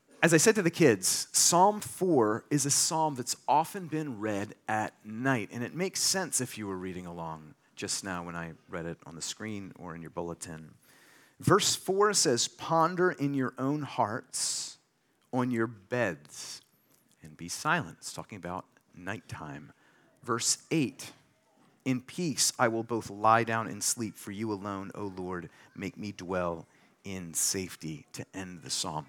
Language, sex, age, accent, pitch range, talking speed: English, male, 40-59, American, 95-140 Hz, 170 wpm